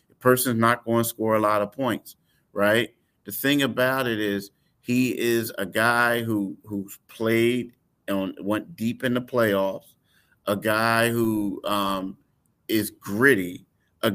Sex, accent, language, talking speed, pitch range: male, American, English, 150 wpm, 105-125 Hz